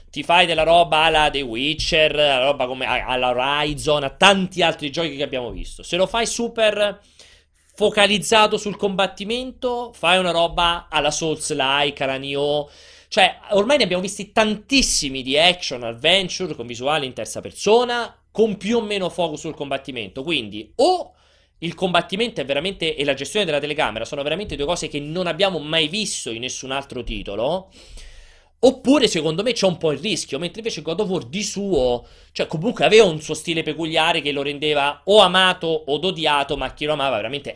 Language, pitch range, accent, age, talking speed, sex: Italian, 135-195 Hz, native, 30-49, 175 wpm, male